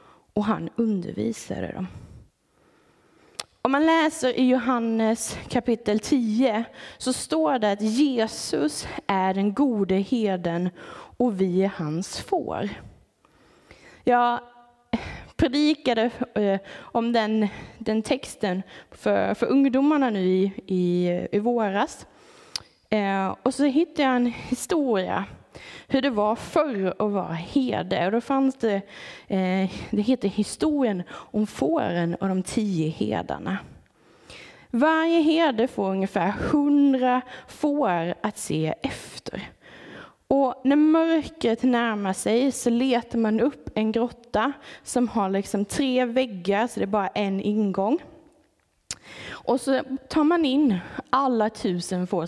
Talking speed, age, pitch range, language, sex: 120 wpm, 20-39, 195-265 Hz, Swedish, female